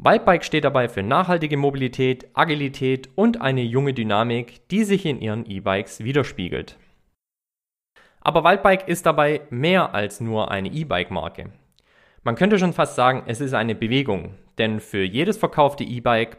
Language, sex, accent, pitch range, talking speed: German, male, German, 110-155 Hz, 145 wpm